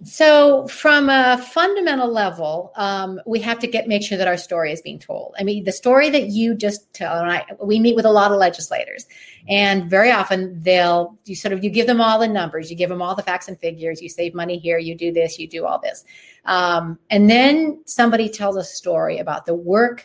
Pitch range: 170-220 Hz